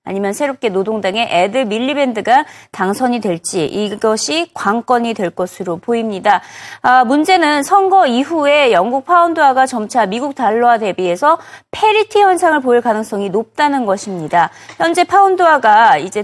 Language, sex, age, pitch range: Korean, female, 30-49, 210-300 Hz